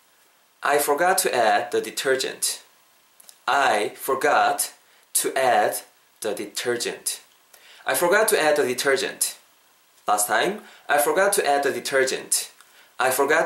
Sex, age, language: male, 20-39, Korean